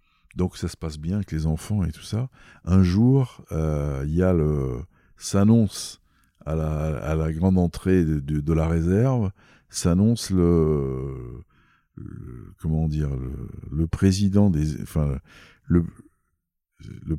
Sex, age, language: male, 60-79, French